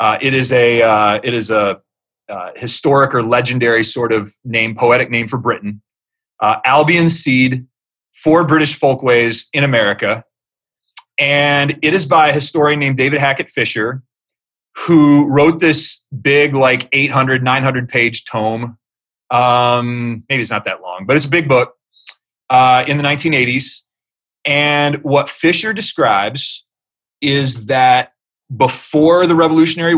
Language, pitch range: English, 125-165 Hz